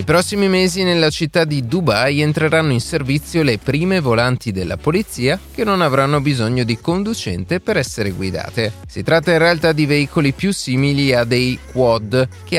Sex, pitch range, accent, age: male, 110-165 Hz, native, 30-49